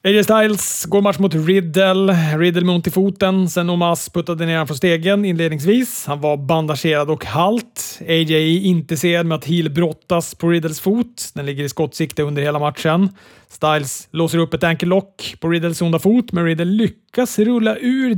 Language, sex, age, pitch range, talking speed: Swedish, male, 30-49, 155-190 Hz, 180 wpm